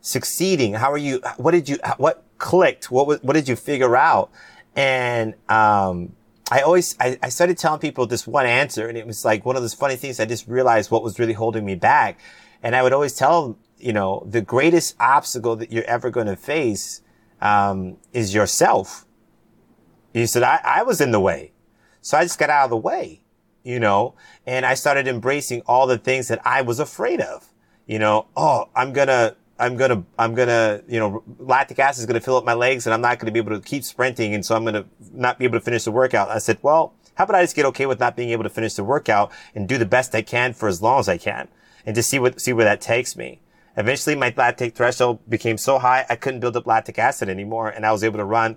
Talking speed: 245 wpm